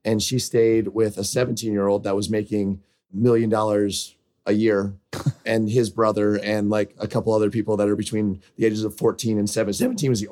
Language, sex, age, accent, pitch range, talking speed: English, male, 30-49, American, 105-120 Hz, 210 wpm